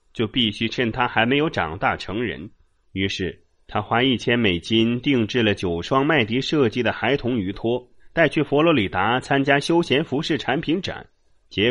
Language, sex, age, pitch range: Chinese, male, 30-49, 105-135 Hz